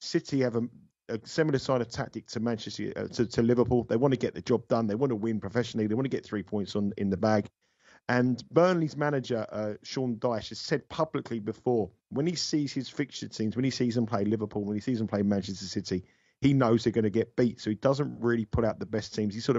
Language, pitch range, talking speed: English, 110-130 Hz, 255 wpm